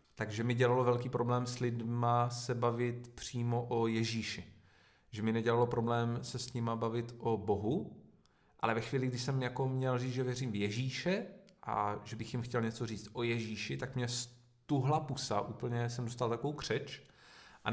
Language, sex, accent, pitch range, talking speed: Czech, male, native, 110-125 Hz, 185 wpm